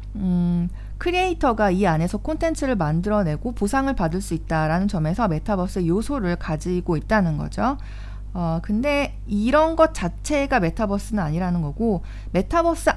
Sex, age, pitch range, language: female, 40-59, 175-275 Hz, Korean